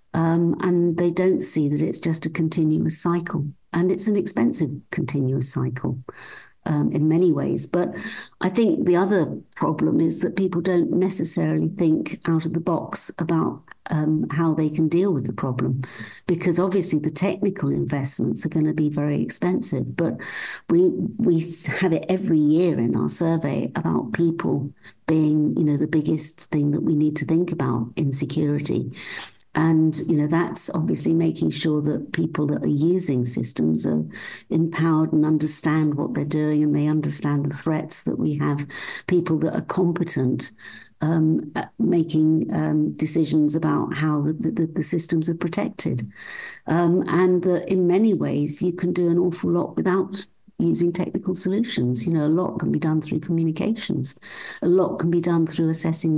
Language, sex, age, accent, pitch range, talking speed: English, female, 60-79, British, 150-175 Hz, 170 wpm